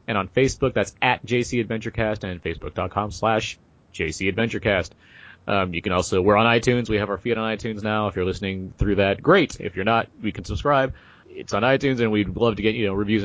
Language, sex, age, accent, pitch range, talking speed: English, male, 30-49, American, 100-120 Hz, 215 wpm